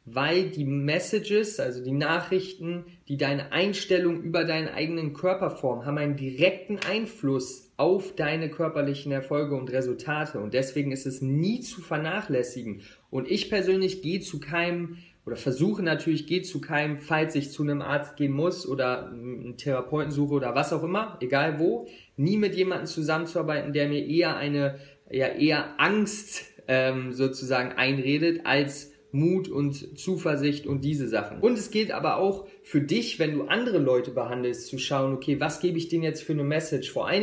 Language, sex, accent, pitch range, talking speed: German, male, German, 140-170 Hz, 170 wpm